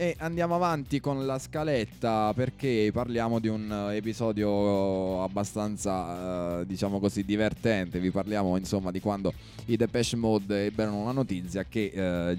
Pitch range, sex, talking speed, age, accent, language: 90-110 Hz, male, 140 wpm, 20-39, native, Italian